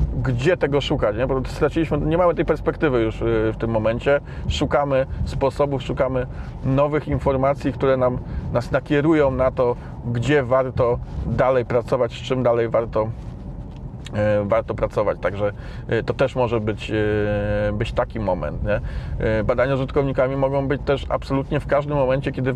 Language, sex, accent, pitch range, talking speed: Polish, male, native, 120-145 Hz, 145 wpm